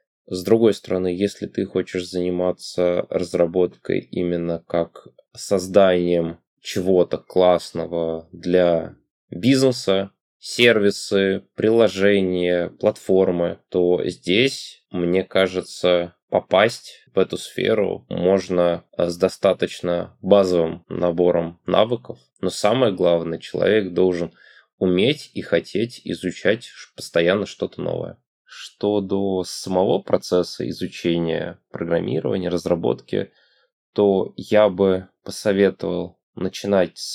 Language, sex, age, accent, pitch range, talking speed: Russian, male, 20-39, native, 85-100 Hz, 90 wpm